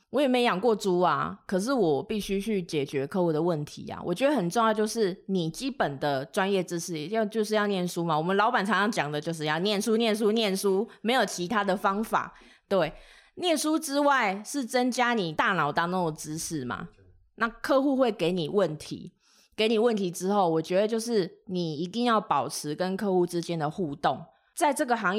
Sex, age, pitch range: female, 20-39, 160-215 Hz